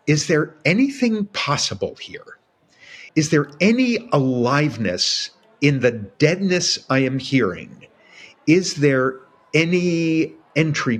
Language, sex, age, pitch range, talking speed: English, male, 50-69, 125-170 Hz, 105 wpm